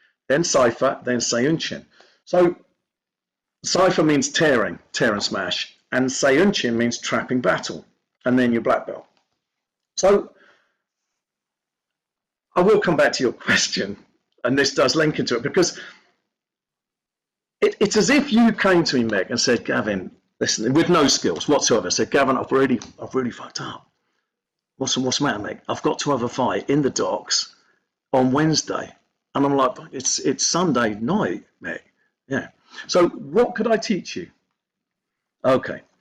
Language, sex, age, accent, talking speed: English, male, 50-69, British, 155 wpm